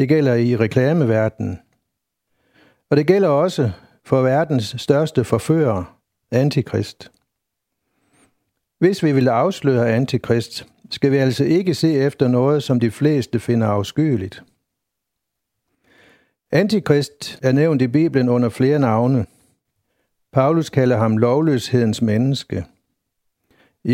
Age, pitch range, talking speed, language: 60-79, 115-150 Hz, 110 wpm, Danish